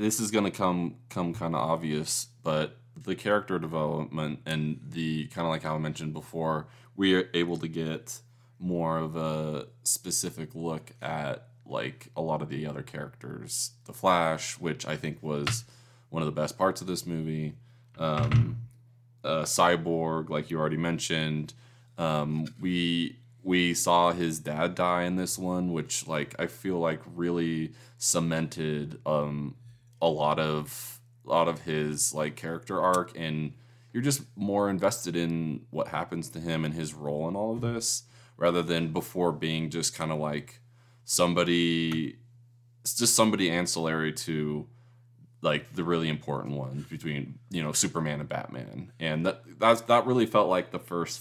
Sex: male